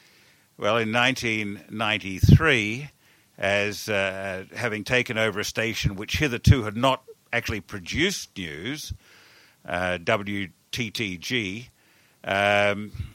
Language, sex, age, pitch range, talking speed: English, male, 60-79, 105-125 Hz, 90 wpm